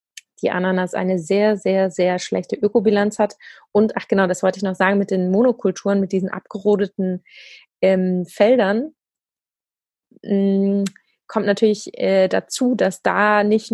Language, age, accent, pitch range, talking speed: German, 20-39, German, 190-220 Hz, 145 wpm